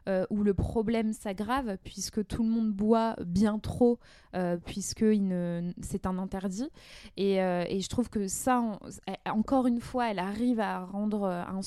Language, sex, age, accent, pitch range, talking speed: French, female, 20-39, French, 185-230 Hz, 175 wpm